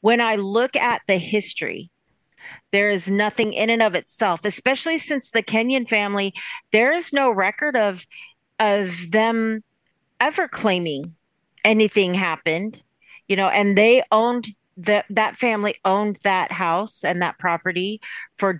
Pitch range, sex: 180-225 Hz, female